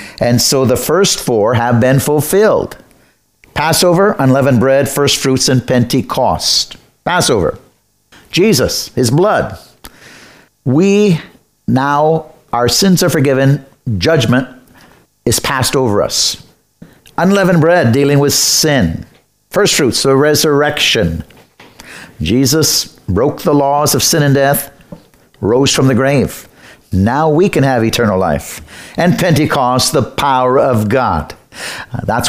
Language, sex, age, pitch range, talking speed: English, male, 60-79, 125-150 Hz, 120 wpm